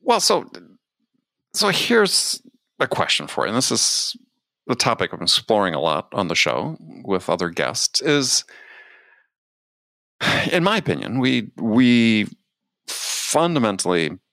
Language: English